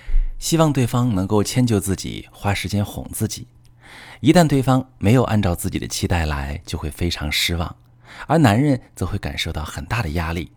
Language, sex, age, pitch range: Chinese, male, 30-49, 85-120 Hz